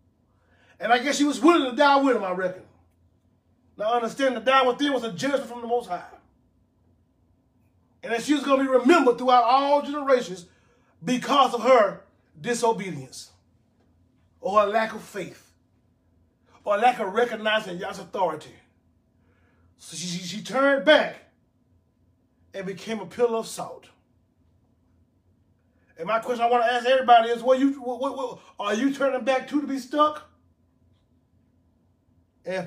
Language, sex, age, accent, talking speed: English, male, 30-49, American, 160 wpm